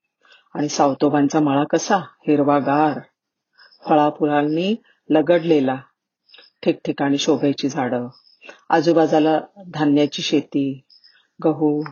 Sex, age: female, 40-59